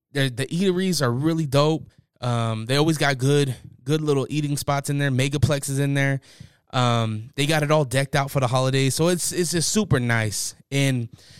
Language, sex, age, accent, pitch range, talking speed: English, male, 20-39, American, 120-160 Hz, 190 wpm